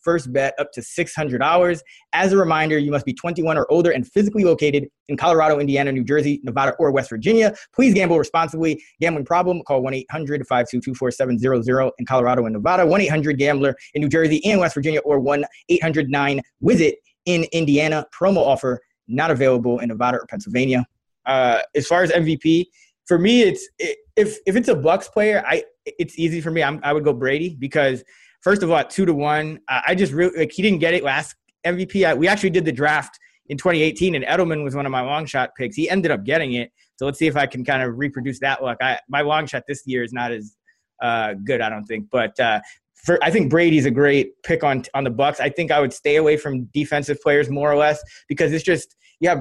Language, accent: English, American